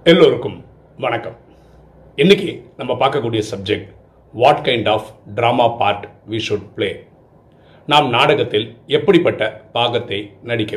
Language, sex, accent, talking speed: Tamil, male, native, 105 wpm